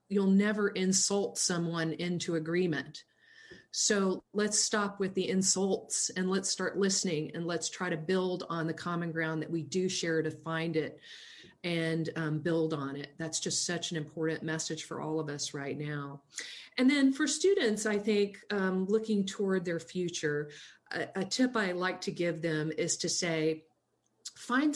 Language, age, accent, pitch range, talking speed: English, 40-59, American, 160-195 Hz, 175 wpm